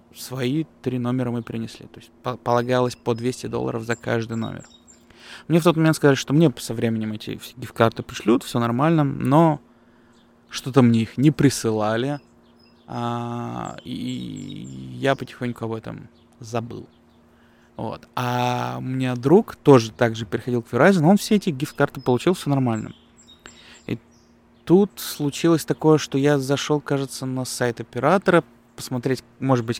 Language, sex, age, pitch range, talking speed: Russian, male, 20-39, 120-140 Hz, 145 wpm